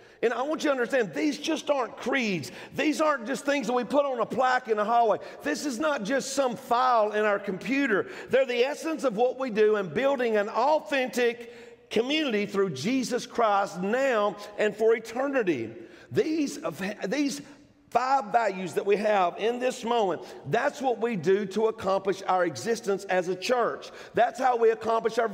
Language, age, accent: English, 50-69, American